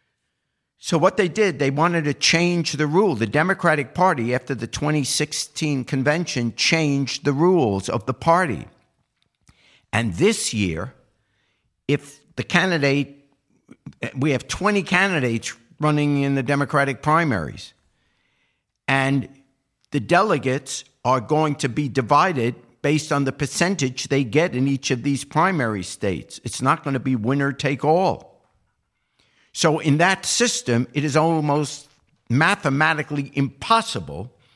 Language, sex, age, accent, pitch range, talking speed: English, male, 50-69, American, 125-155 Hz, 130 wpm